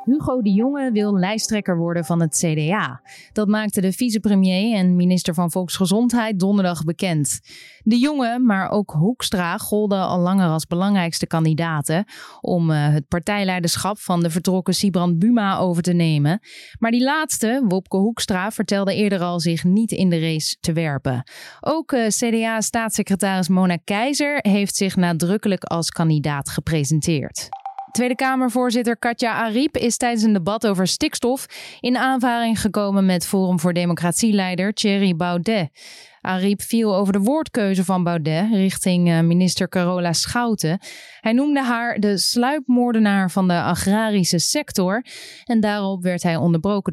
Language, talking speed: Dutch, 140 wpm